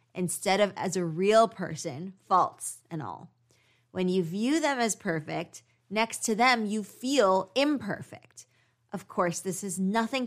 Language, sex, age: English, female, 20-39